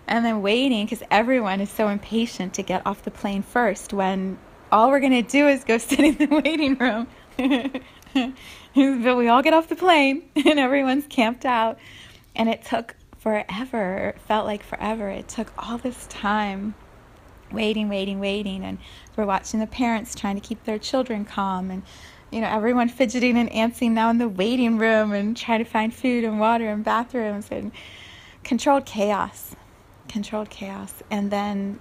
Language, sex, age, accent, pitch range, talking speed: English, female, 20-39, American, 205-265 Hz, 175 wpm